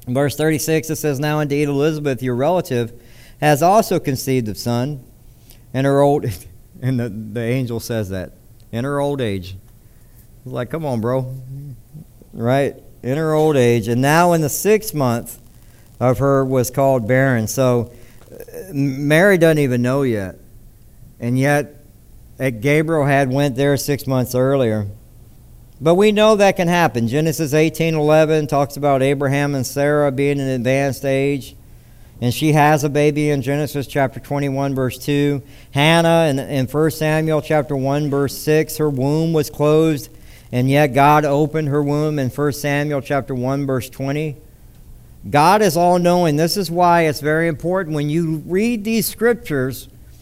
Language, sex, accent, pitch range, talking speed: English, male, American, 125-155 Hz, 155 wpm